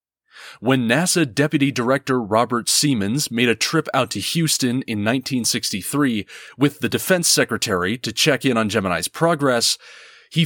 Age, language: 30-49, English